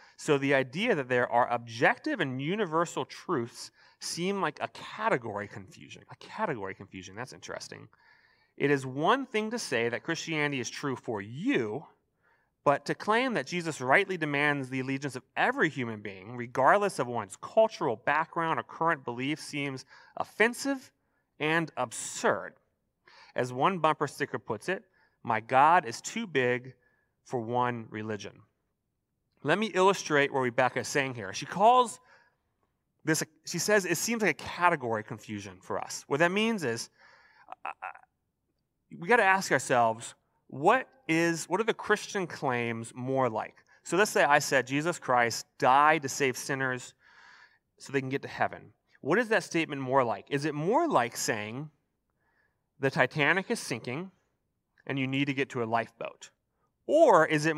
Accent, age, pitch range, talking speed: American, 30-49, 125-170 Hz, 160 wpm